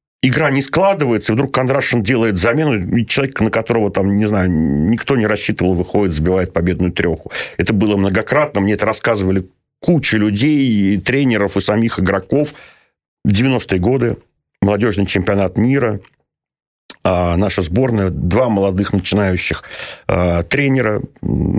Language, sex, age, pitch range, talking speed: Russian, male, 50-69, 95-130 Hz, 125 wpm